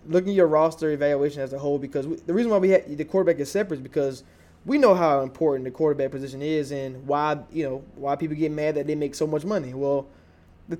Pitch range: 140-170 Hz